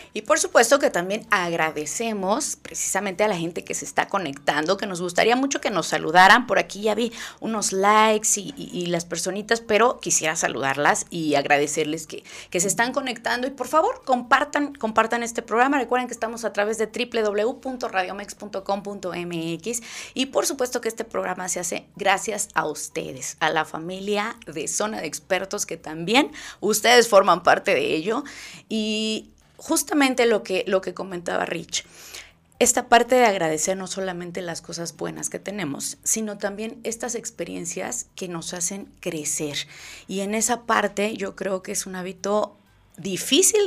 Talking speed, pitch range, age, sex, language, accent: 160 wpm, 185-235 Hz, 30-49, female, Spanish, Mexican